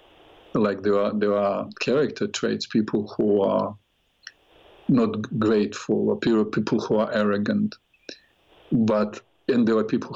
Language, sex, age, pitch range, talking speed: English, male, 50-69, 105-165 Hz, 125 wpm